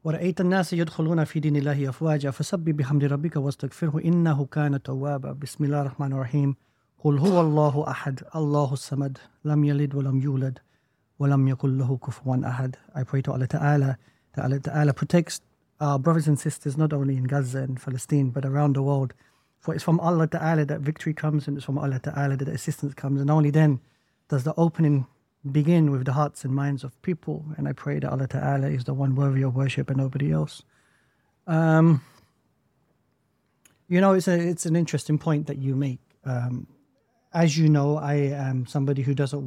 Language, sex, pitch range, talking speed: English, male, 135-155 Hz, 135 wpm